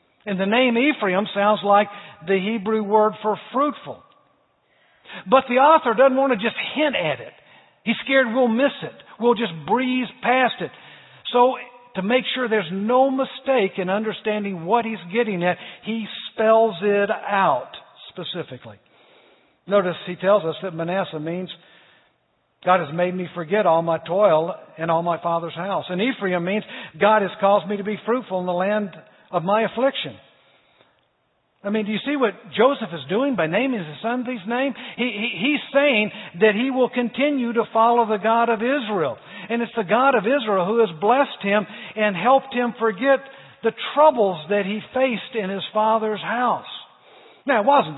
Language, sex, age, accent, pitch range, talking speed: English, male, 50-69, American, 175-240 Hz, 175 wpm